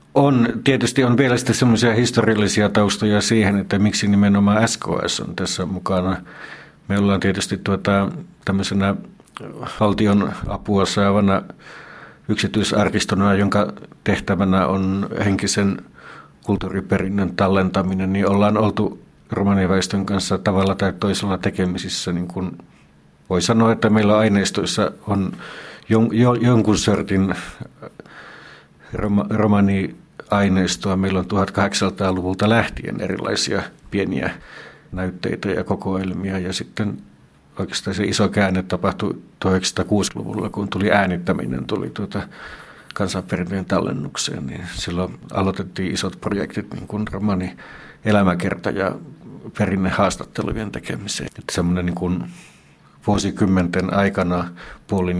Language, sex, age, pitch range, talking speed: Finnish, male, 60-79, 95-105 Hz, 105 wpm